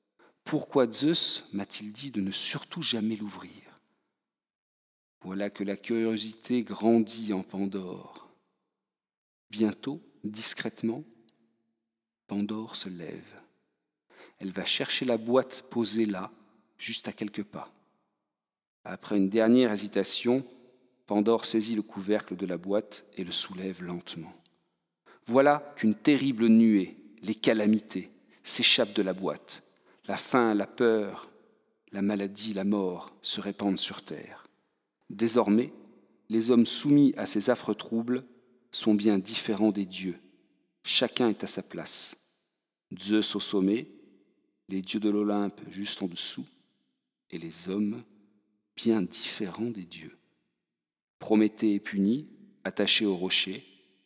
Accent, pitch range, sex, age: French, 95-115 Hz, male, 50-69